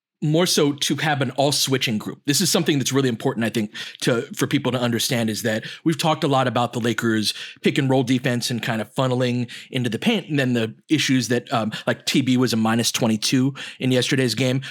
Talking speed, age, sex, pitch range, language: 230 wpm, 30-49, male, 120-155 Hz, English